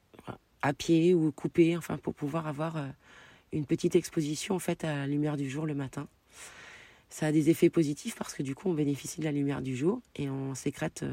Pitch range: 135-165 Hz